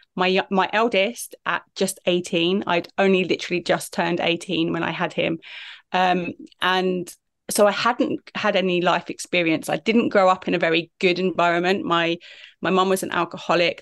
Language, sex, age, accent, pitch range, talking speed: English, female, 30-49, British, 170-200 Hz, 175 wpm